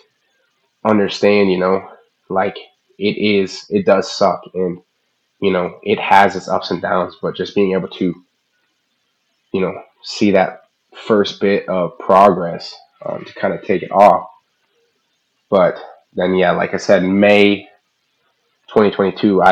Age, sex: 20-39, male